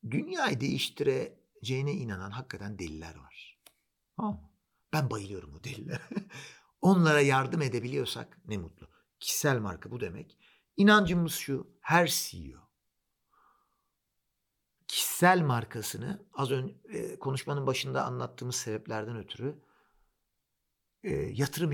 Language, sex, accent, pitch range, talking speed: Turkish, male, native, 110-175 Hz, 90 wpm